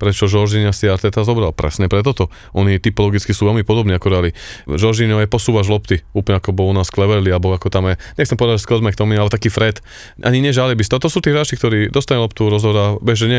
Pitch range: 95-110 Hz